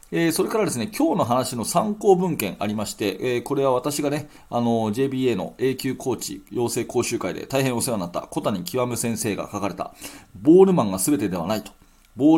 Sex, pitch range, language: male, 105-160 Hz, Japanese